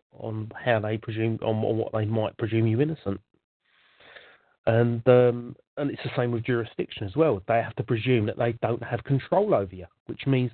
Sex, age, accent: male, 40-59, British